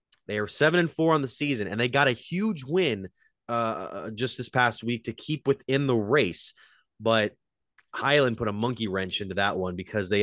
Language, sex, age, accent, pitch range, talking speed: English, male, 30-49, American, 100-125 Hz, 205 wpm